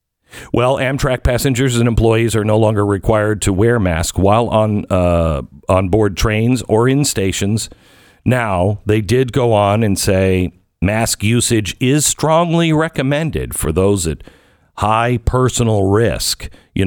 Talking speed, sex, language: 140 wpm, male, English